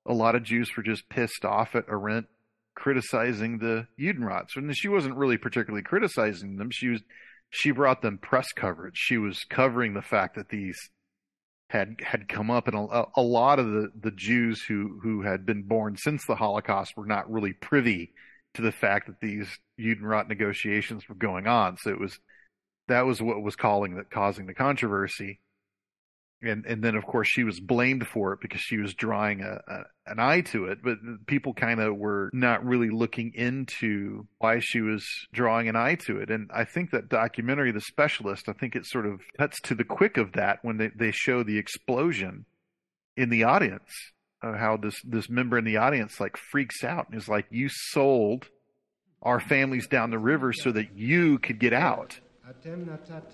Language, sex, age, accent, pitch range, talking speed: English, male, 40-59, American, 105-125 Hz, 195 wpm